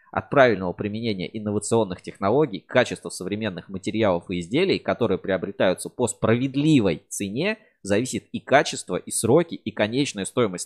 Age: 20-39